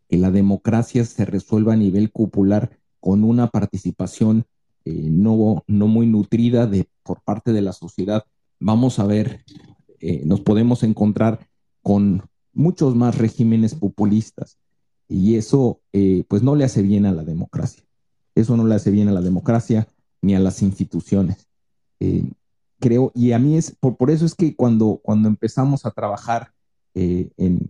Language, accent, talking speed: Spanish, Mexican, 160 wpm